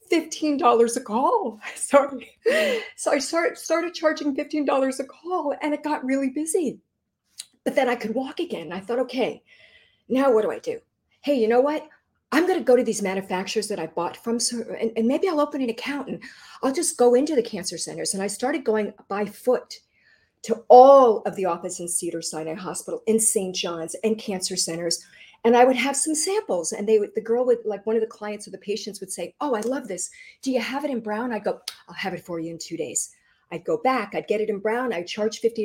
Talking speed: 230 wpm